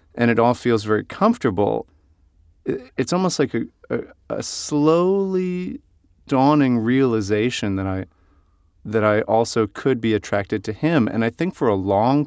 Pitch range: 105-155 Hz